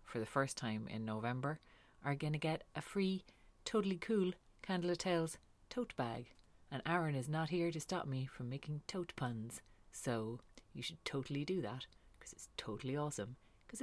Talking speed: 180 wpm